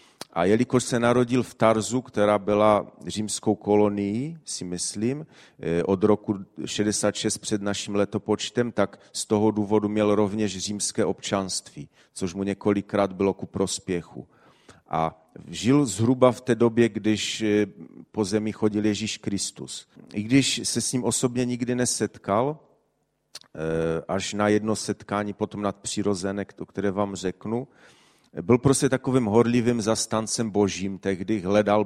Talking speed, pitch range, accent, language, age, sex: 135 wpm, 100-115 Hz, native, Czech, 40-59, male